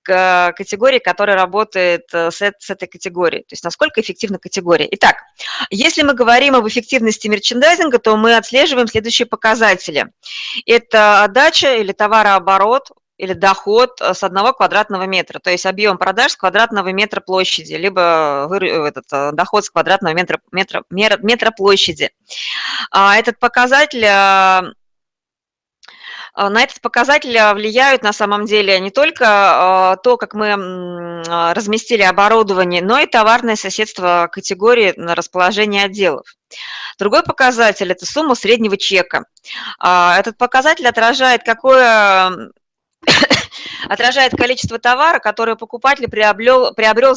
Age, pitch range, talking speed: 20-39, 190-240 Hz, 115 wpm